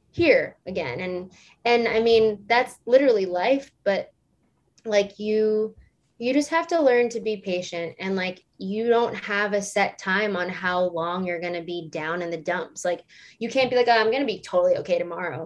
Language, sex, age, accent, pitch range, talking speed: English, female, 20-39, American, 185-240 Hz, 200 wpm